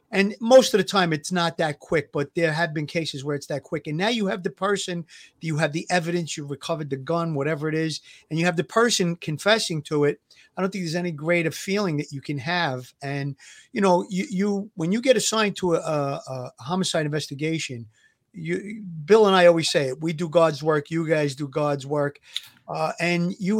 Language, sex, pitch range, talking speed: English, male, 145-180 Hz, 220 wpm